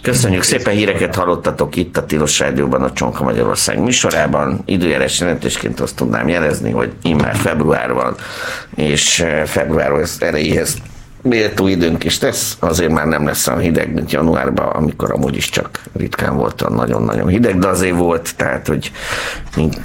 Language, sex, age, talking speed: Hungarian, male, 50-69, 155 wpm